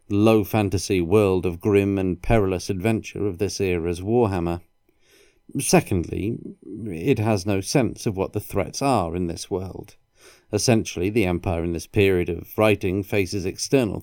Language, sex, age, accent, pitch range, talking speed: English, male, 40-59, British, 90-110 Hz, 145 wpm